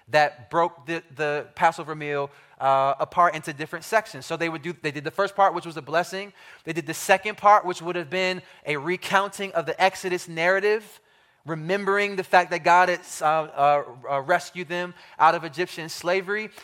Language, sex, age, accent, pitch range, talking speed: English, male, 20-39, American, 170-220 Hz, 190 wpm